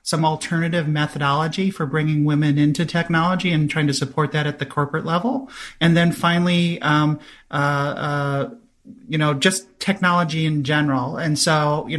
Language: English